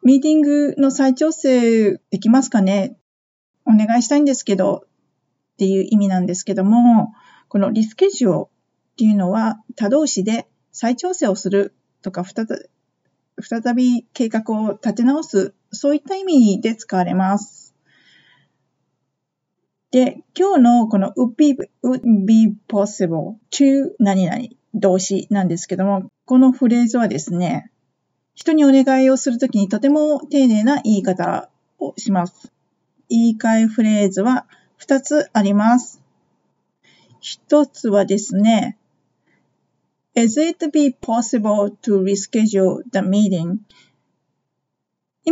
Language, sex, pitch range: Japanese, female, 200-265 Hz